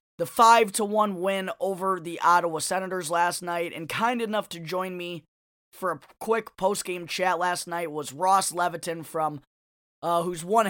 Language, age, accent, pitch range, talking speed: English, 20-39, American, 165-190 Hz, 180 wpm